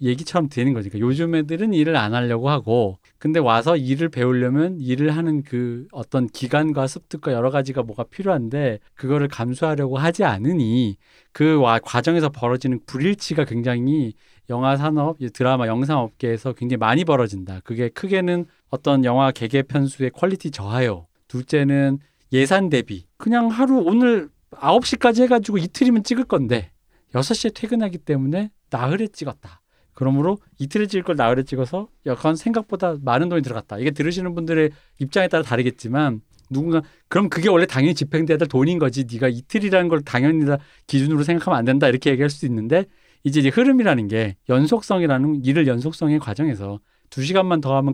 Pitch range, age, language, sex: 125-170 Hz, 40-59, Korean, male